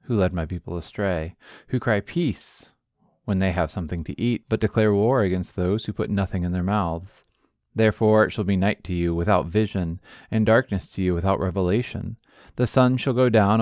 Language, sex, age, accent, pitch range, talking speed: English, male, 20-39, American, 95-110 Hz, 200 wpm